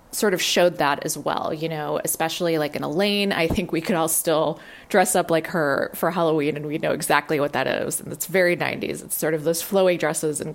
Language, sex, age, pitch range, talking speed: English, female, 20-39, 150-175 Hz, 240 wpm